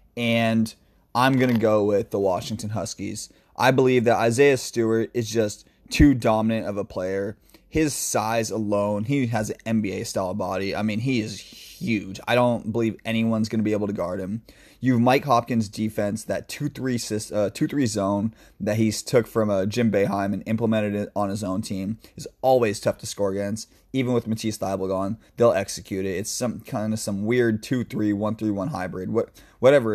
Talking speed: 190 wpm